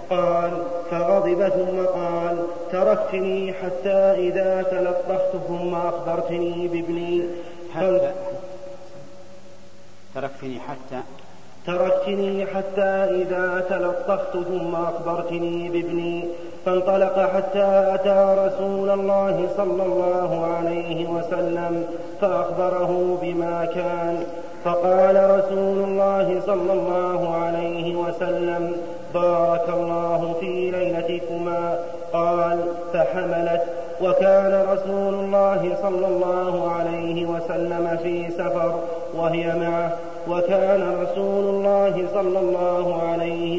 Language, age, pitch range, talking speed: Arabic, 30-49, 170-185 Hz, 85 wpm